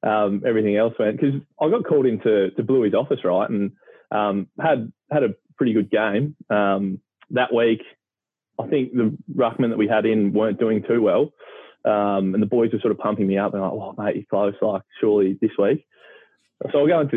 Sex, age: male, 20-39